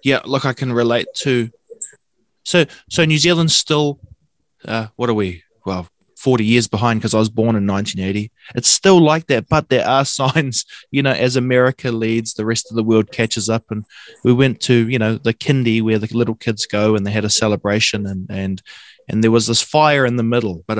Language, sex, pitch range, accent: English, male, 110-135 Hz, Australian